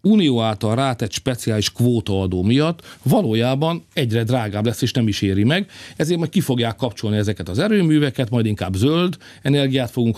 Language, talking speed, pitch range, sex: Hungarian, 165 wpm, 100-125 Hz, male